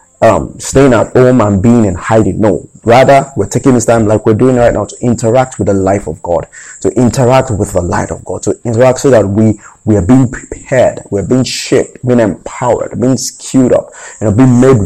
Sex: male